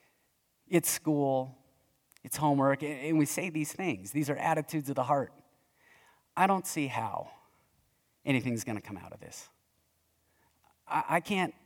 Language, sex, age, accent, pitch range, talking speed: English, male, 30-49, American, 135-185 Hz, 145 wpm